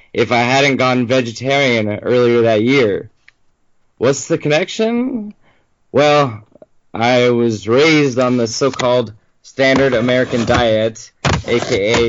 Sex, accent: male, American